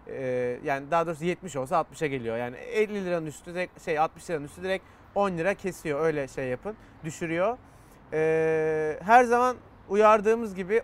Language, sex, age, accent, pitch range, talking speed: Turkish, male, 30-49, native, 155-215 Hz, 165 wpm